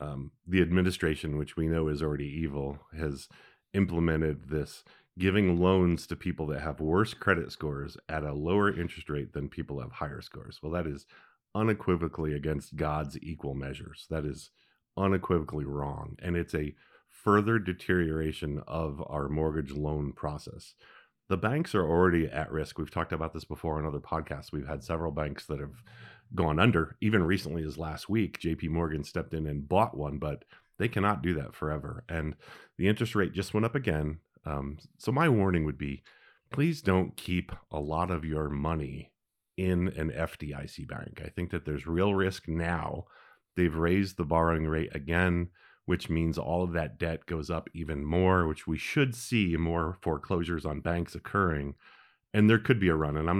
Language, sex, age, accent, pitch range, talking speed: English, male, 40-59, American, 75-90 Hz, 180 wpm